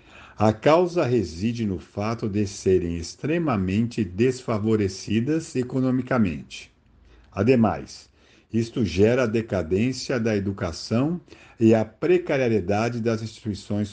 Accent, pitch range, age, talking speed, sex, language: Brazilian, 95-125 Hz, 50-69, 95 wpm, male, Portuguese